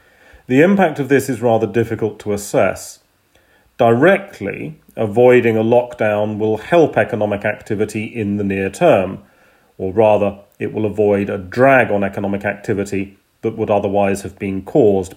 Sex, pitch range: male, 100-125 Hz